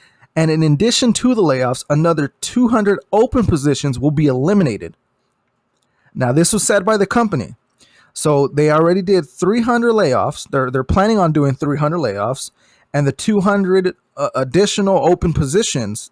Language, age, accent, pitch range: English, 20-39, American, 140-205 Hz